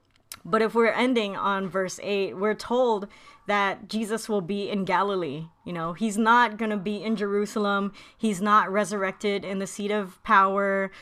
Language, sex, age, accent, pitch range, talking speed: English, female, 20-39, American, 175-210 Hz, 175 wpm